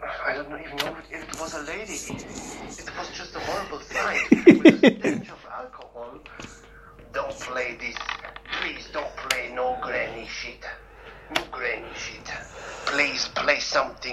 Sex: male